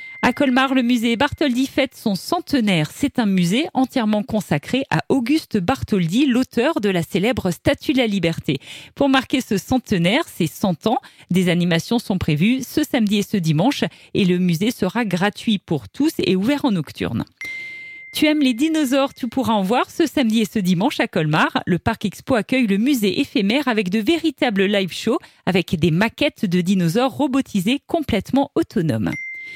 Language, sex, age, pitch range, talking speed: French, female, 40-59, 185-275 Hz, 175 wpm